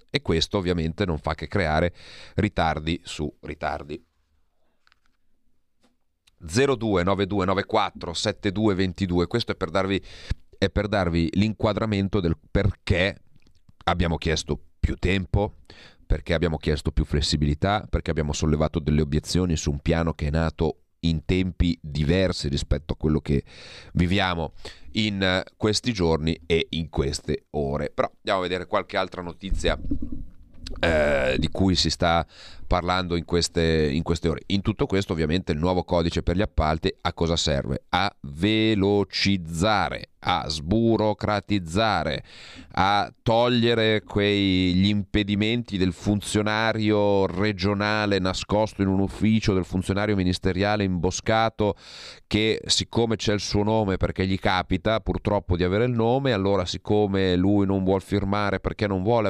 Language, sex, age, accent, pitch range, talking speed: Italian, male, 40-59, native, 85-105 Hz, 130 wpm